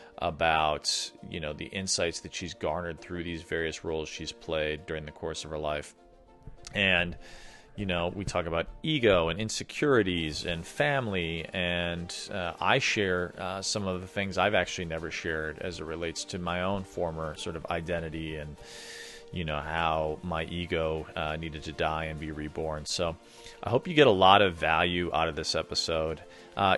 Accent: American